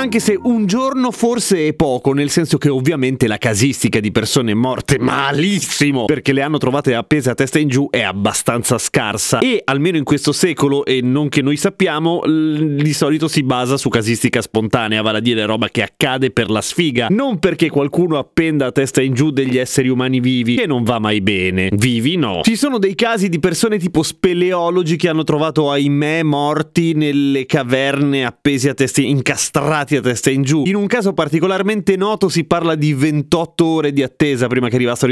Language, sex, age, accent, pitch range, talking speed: Italian, male, 30-49, native, 125-170 Hz, 195 wpm